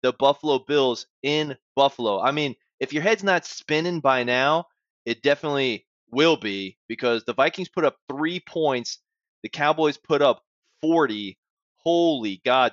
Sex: male